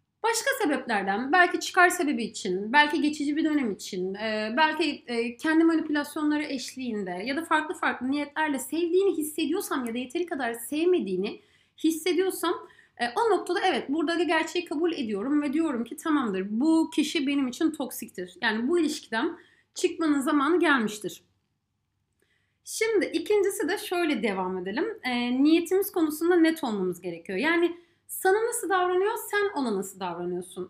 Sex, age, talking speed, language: female, 30-49, 135 wpm, Turkish